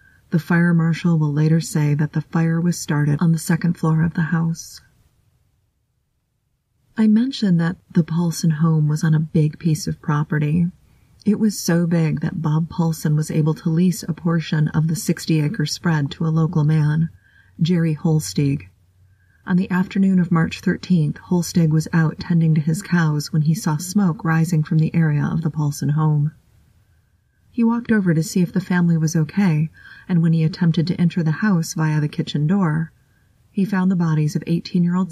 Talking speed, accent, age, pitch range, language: 185 wpm, American, 30-49, 155-175 Hz, English